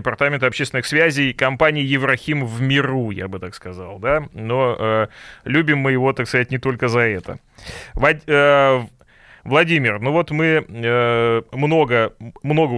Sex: male